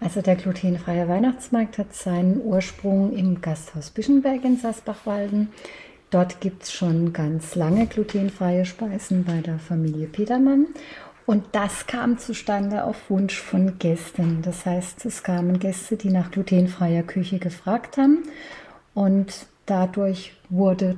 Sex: female